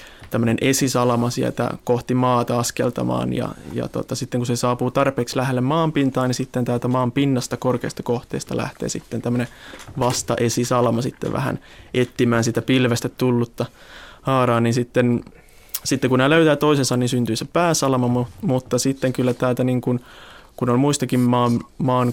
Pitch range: 120-130 Hz